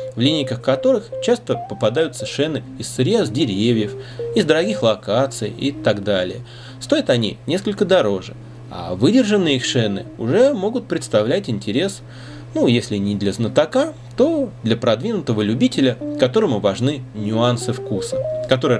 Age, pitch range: 20-39, 110-130 Hz